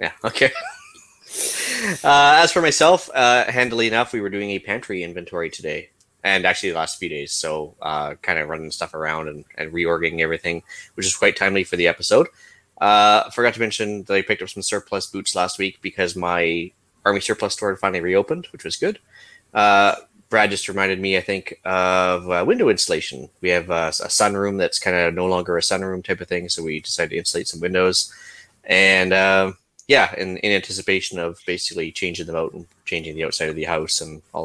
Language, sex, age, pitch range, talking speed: English, male, 20-39, 90-100 Hz, 205 wpm